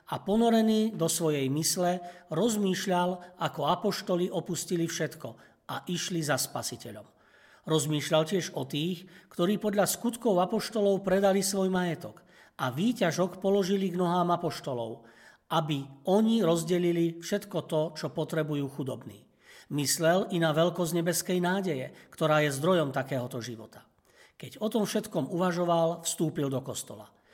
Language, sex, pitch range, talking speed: Slovak, male, 145-180 Hz, 125 wpm